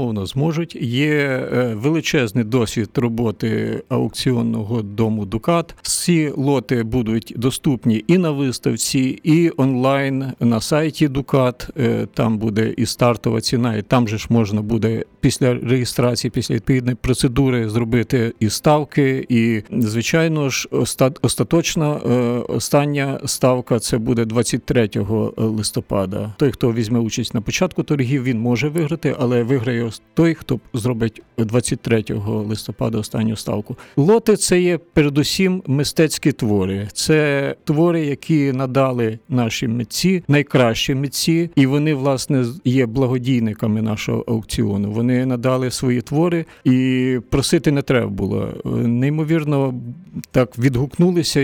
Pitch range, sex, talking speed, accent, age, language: 115-145 Hz, male, 120 wpm, native, 50-69, Ukrainian